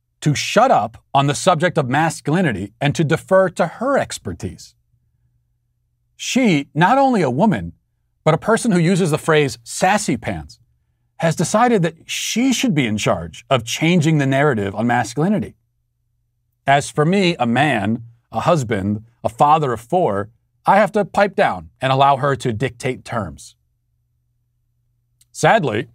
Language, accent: English, American